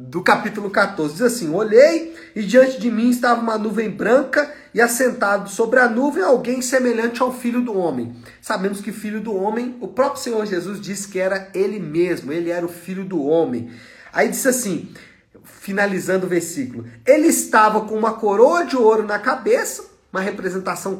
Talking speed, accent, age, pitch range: 175 wpm, Brazilian, 40-59, 190-255 Hz